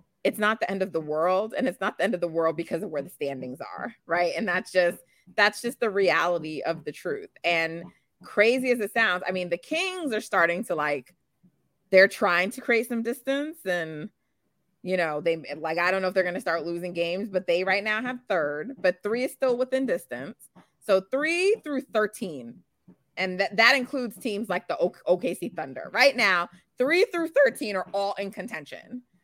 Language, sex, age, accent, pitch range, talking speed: English, female, 20-39, American, 170-225 Hz, 205 wpm